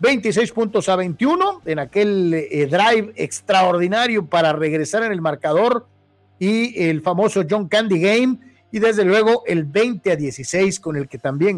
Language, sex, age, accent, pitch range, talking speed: Spanish, male, 50-69, Mexican, 155-225 Hz, 160 wpm